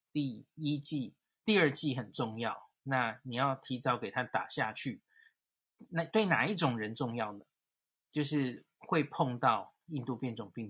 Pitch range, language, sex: 125-160 Hz, Chinese, male